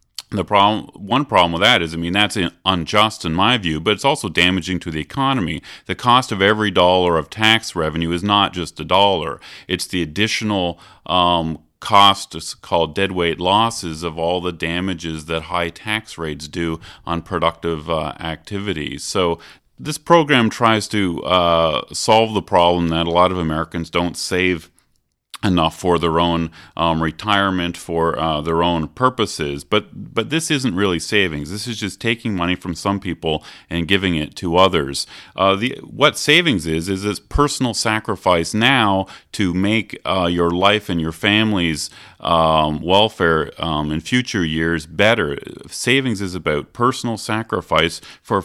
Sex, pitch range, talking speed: male, 85-110 Hz, 165 wpm